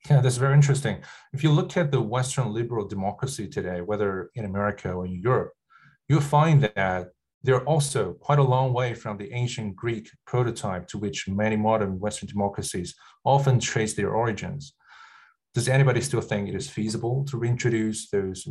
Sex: male